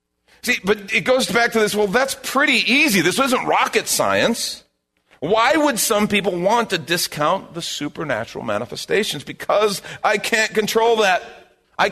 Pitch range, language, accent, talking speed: 175-235 Hz, English, American, 155 wpm